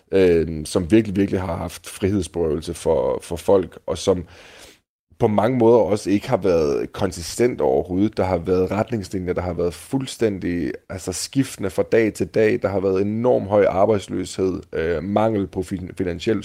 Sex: male